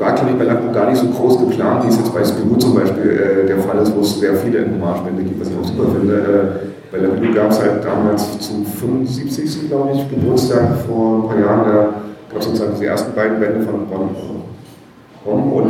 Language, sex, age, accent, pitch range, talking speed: German, male, 40-59, German, 100-110 Hz, 220 wpm